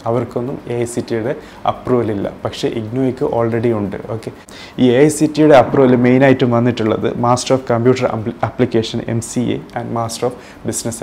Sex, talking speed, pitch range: male, 175 wpm, 110-120 Hz